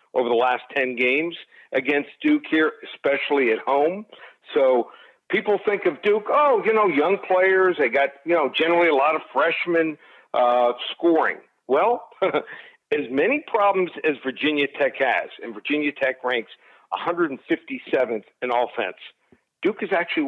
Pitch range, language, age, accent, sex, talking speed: 135-180 Hz, English, 50-69, American, male, 150 wpm